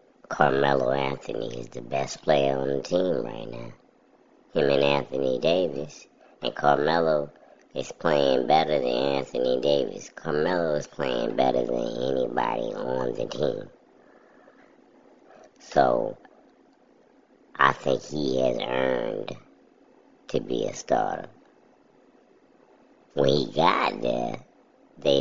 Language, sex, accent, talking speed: English, male, American, 110 wpm